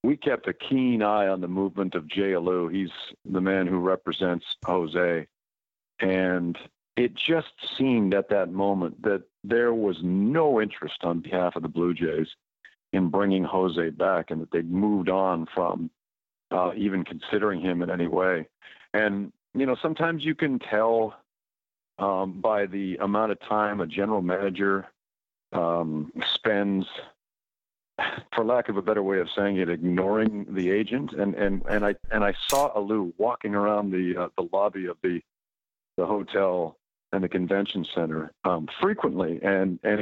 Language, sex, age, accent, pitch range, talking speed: English, male, 50-69, American, 90-105 Hz, 160 wpm